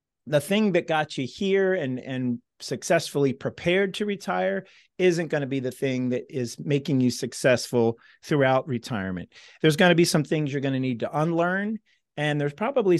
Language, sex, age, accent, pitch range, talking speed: English, male, 40-59, American, 125-155 Hz, 185 wpm